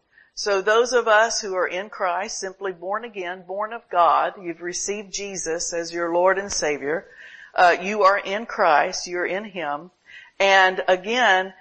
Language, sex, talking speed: English, female, 165 wpm